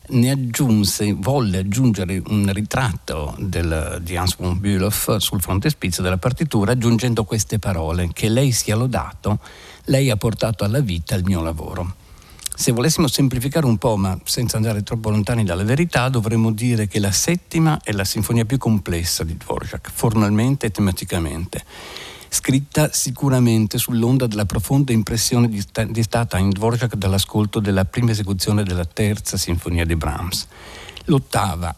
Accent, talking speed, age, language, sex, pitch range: native, 150 wpm, 60-79, Italian, male, 95-125 Hz